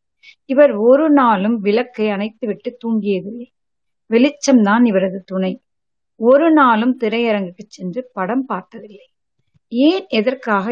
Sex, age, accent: female, 30-49, native